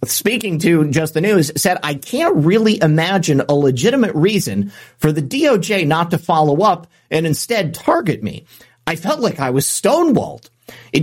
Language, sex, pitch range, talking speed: English, male, 145-210 Hz, 170 wpm